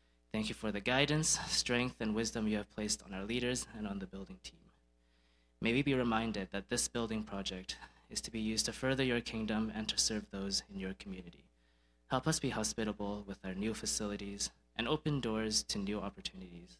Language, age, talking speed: English, 20-39, 200 wpm